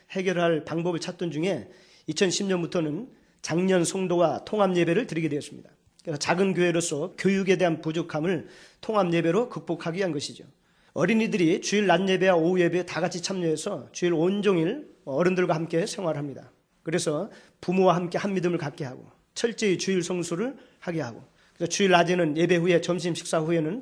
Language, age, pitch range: Korean, 40-59, 160-185 Hz